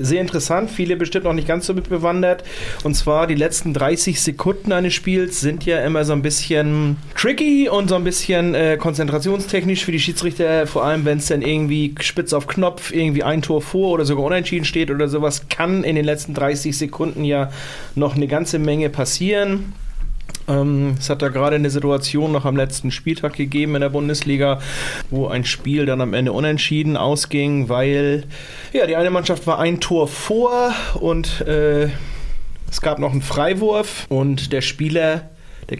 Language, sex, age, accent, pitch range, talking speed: German, male, 30-49, German, 135-165 Hz, 175 wpm